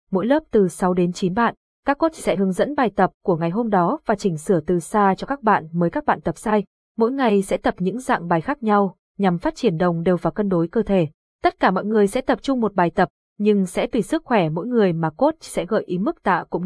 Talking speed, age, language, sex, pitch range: 270 wpm, 20-39, Vietnamese, female, 185-230 Hz